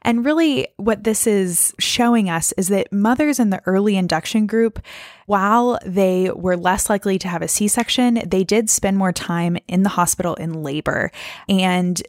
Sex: female